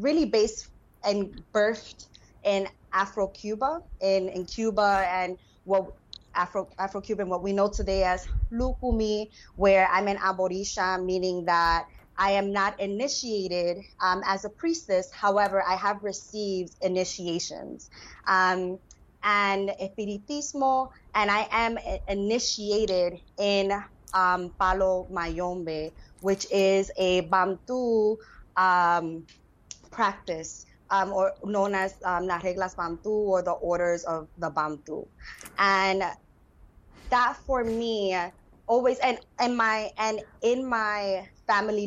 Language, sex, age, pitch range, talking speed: English, female, 20-39, 175-210 Hz, 115 wpm